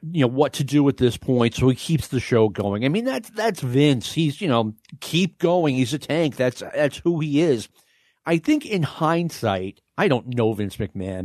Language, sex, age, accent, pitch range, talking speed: English, male, 40-59, American, 110-145 Hz, 220 wpm